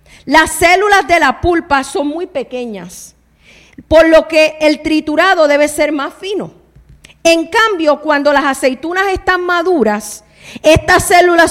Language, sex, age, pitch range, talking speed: Spanish, female, 40-59, 250-345 Hz, 135 wpm